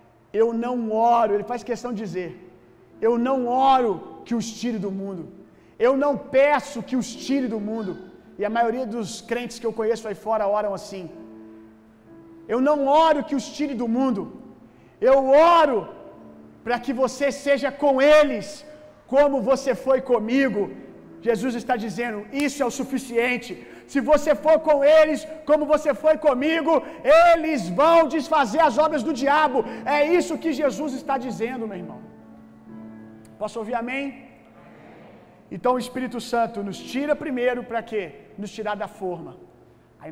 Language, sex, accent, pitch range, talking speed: Gujarati, male, Brazilian, 200-275 Hz, 155 wpm